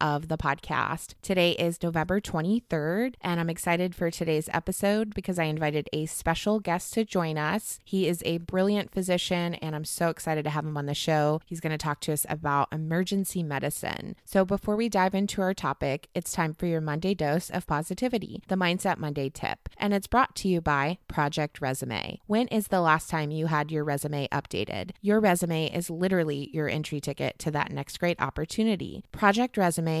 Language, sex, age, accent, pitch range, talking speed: English, female, 20-39, American, 150-190 Hz, 195 wpm